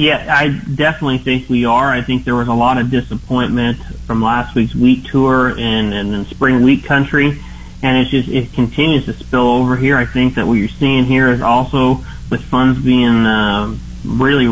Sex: male